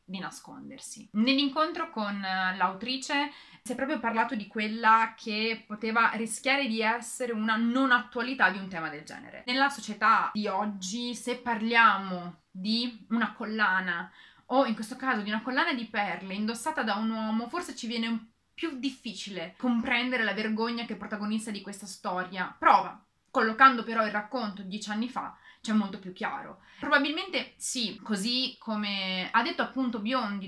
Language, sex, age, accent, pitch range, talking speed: Italian, female, 20-39, native, 205-250 Hz, 155 wpm